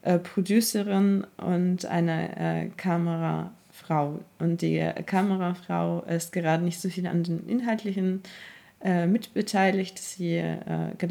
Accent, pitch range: German, 165-190 Hz